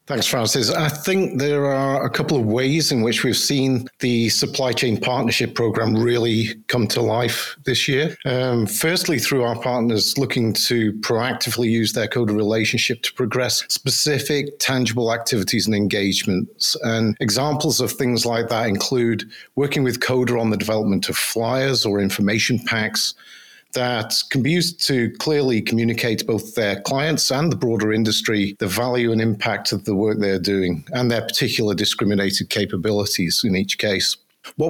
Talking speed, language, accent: 165 wpm, English, British